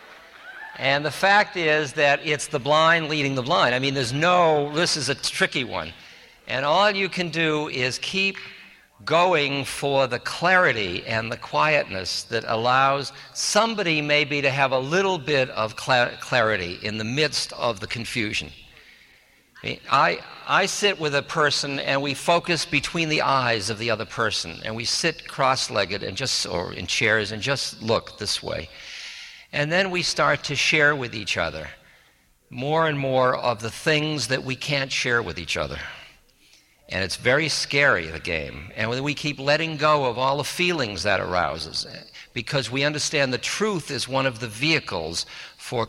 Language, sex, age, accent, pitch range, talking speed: English, male, 60-79, American, 110-150 Hz, 175 wpm